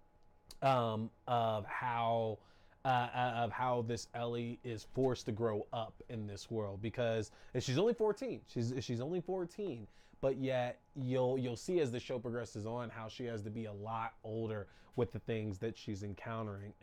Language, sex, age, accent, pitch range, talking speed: English, male, 20-39, American, 105-125 Hz, 170 wpm